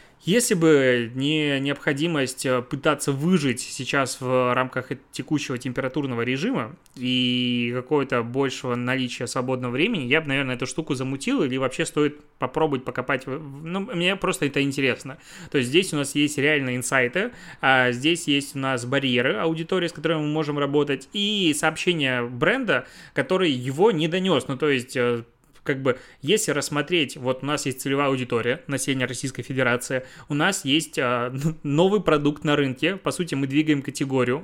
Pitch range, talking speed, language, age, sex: 130-160 Hz, 155 wpm, Russian, 20-39, male